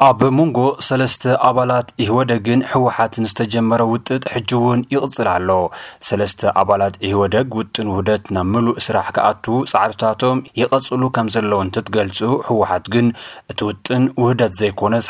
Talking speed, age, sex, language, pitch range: 110 wpm, 30-49, male, Amharic, 95-120 Hz